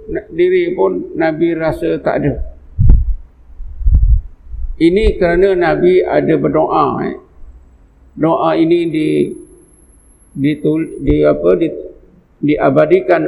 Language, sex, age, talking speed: Malay, male, 50-69, 95 wpm